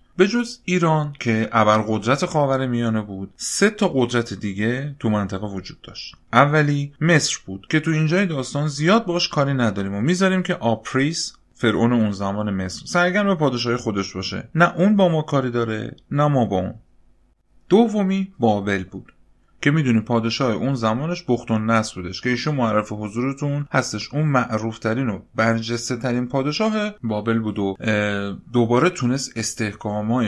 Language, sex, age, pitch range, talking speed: Persian, male, 30-49, 105-150 Hz, 160 wpm